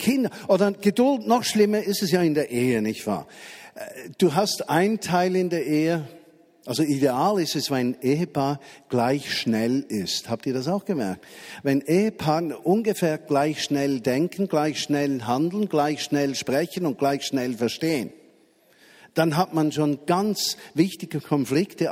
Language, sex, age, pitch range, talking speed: German, male, 50-69, 140-185 Hz, 160 wpm